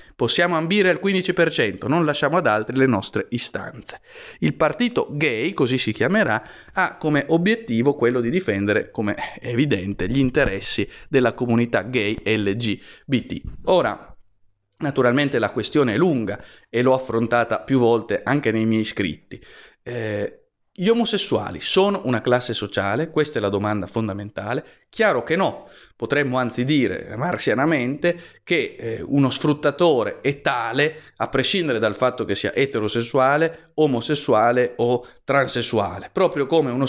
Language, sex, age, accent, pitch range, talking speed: Italian, male, 30-49, native, 110-150 Hz, 140 wpm